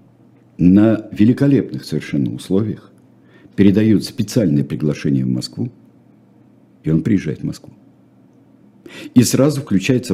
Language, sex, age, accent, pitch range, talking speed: Russian, male, 60-79, native, 75-120 Hz, 100 wpm